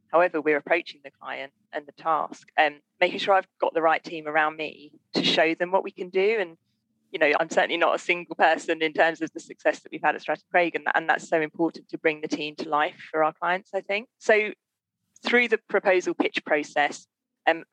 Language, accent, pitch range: English, British, 155-195 Hz